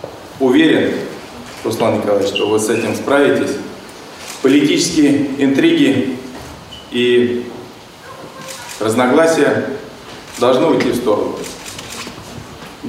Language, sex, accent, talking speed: Russian, male, native, 75 wpm